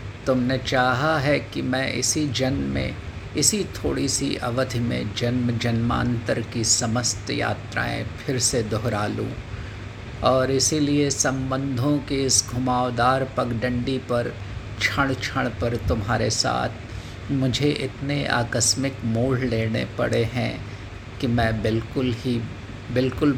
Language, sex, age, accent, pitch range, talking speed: Hindi, male, 50-69, native, 110-125 Hz, 120 wpm